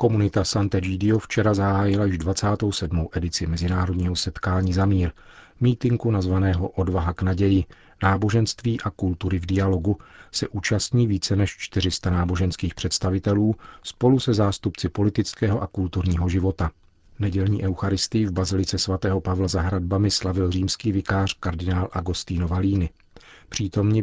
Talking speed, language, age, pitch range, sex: 125 wpm, Czech, 40-59, 90-100 Hz, male